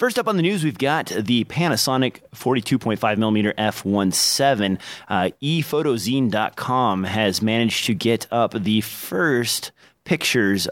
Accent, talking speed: American, 120 wpm